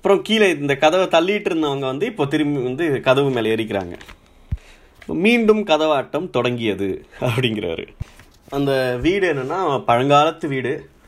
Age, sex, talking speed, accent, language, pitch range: 20-39, male, 120 wpm, native, Tamil, 125-170 Hz